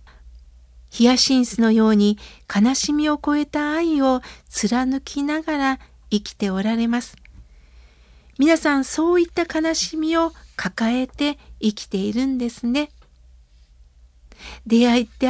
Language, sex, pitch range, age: Japanese, female, 215-310 Hz, 60-79